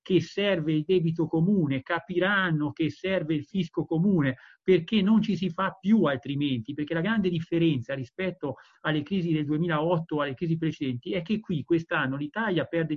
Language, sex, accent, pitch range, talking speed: Italian, male, native, 150-180 Hz, 165 wpm